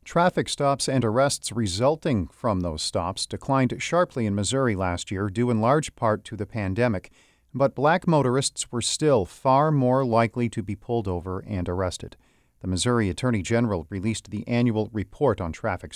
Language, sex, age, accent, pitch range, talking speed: English, male, 40-59, American, 100-130 Hz, 170 wpm